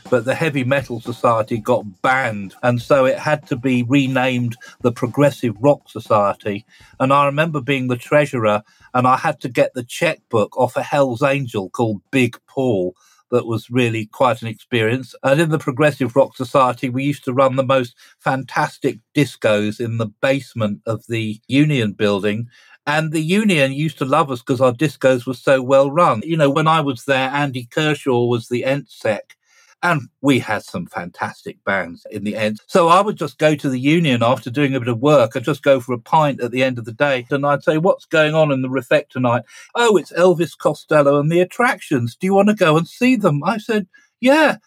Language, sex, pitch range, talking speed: English, male, 120-155 Hz, 205 wpm